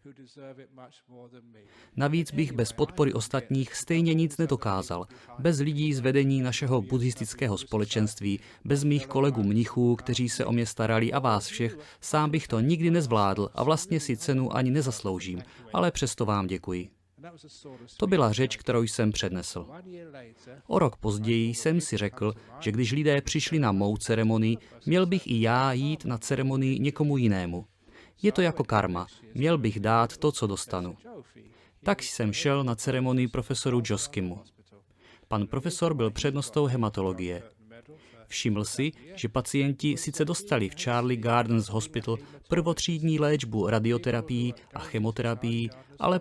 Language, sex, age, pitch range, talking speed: Czech, male, 30-49, 110-145 Hz, 140 wpm